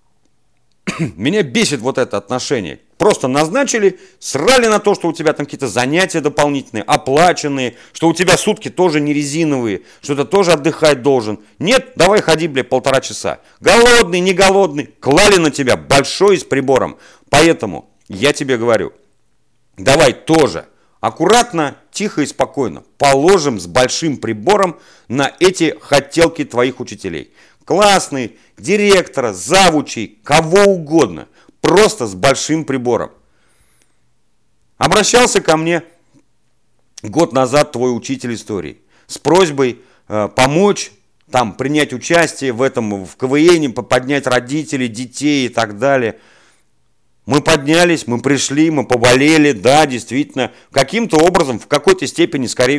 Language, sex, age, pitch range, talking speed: Russian, male, 40-59, 120-165 Hz, 125 wpm